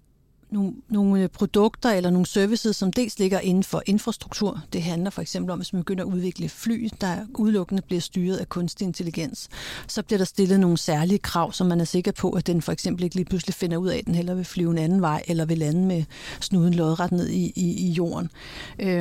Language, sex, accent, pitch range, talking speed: Danish, female, native, 180-210 Hz, 220 wpm